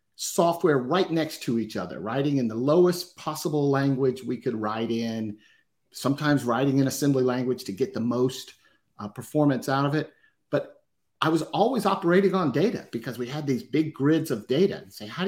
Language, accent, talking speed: English, American, 190 wpm